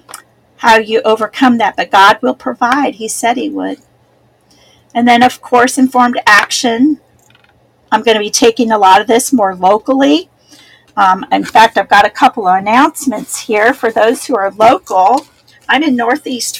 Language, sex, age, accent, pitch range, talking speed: English, female, 40-59, American, 215-275 Hz, 170 wpm